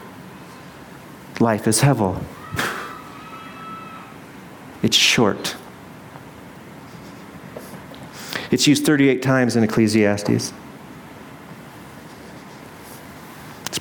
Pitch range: 120-160 Hz